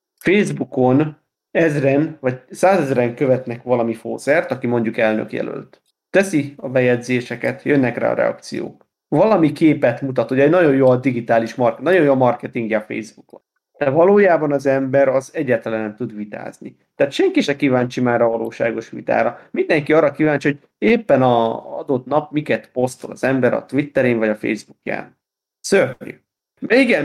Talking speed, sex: 155 wpm, male